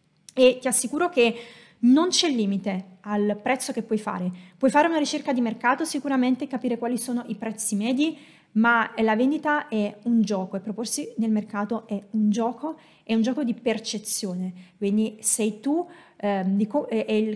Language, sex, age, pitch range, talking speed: Italian, female, 20-39, 210-265 Hz, 165 wpm